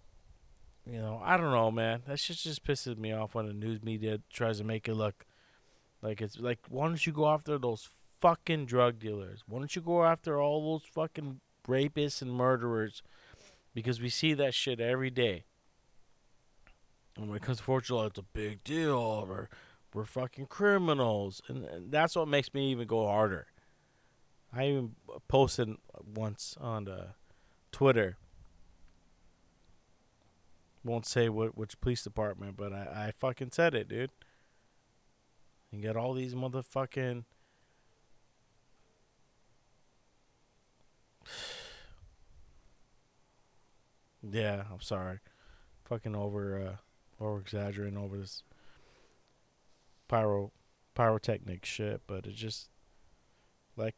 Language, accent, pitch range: English, American, 105-130 Hz